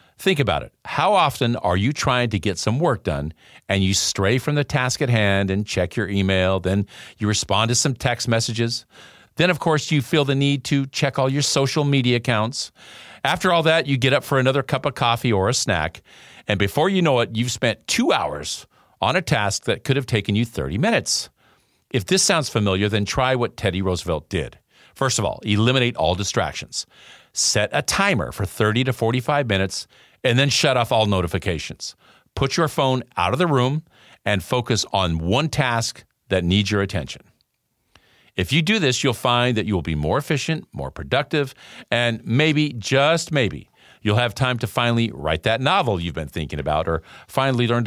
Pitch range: 100-140 Hz